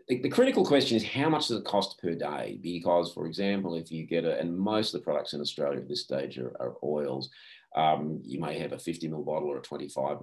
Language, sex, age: English, male, 40-59